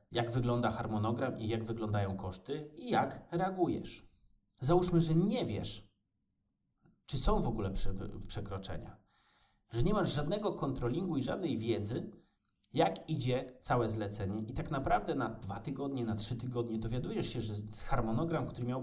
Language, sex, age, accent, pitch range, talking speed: Polish, male, 30-49, native, 105-125 Hz, 145 wpm